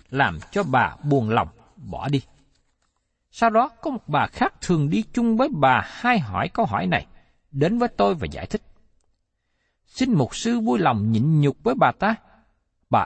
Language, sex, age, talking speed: Vietnamese, male, 60-79, 185 wpm